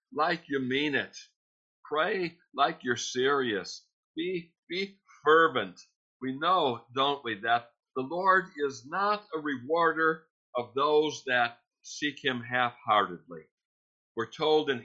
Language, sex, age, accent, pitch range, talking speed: English, male, 60-79, American, 115-150 Hz, 125 wpm